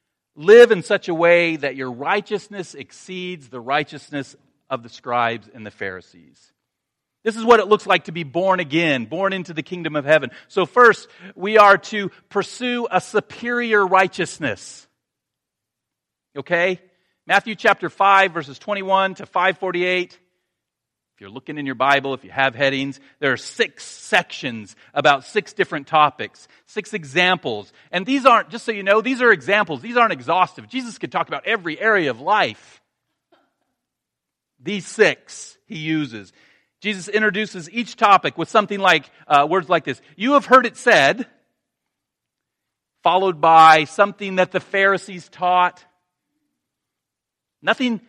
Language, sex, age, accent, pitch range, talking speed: English, male, 40-59, American, 150-205 Hz, 145 wpm